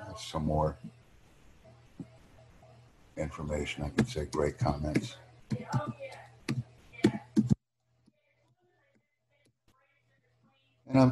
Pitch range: 80-120 Hz